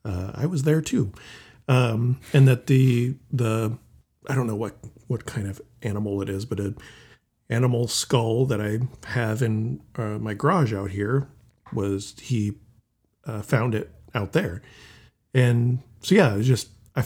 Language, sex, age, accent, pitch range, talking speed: English, male, 40-59, American, 100-130 Hz, 165 wpm